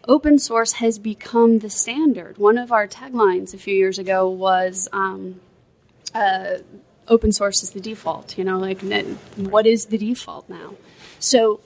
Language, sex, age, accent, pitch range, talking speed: English, female, 20-39, American, 190-235 Hz, 165 wpm